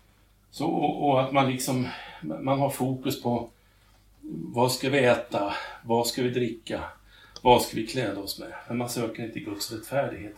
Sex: male